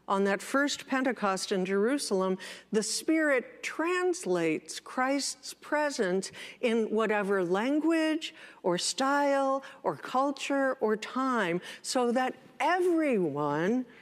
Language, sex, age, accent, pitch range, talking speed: English, female, 60-79, American, 210-290 Hz, 100 wpm